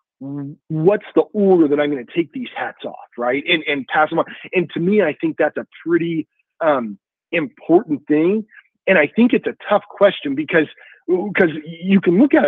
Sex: male